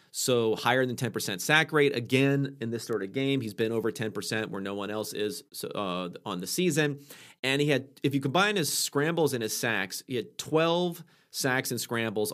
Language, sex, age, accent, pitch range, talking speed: English, male, 30-49, American, 110-145 Hz, 205 wpm